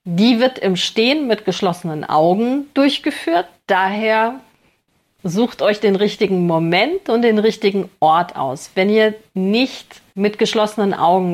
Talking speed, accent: 130 wpm, German